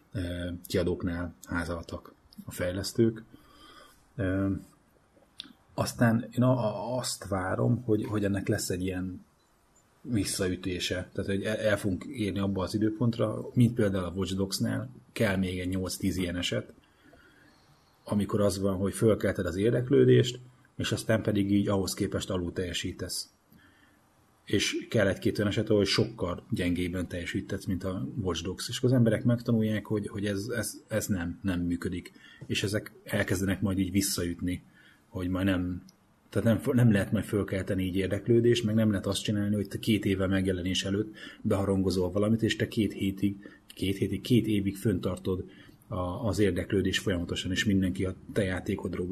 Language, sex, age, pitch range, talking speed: Hungarian, male, 30-49, 95-110 Hz, 145 wpm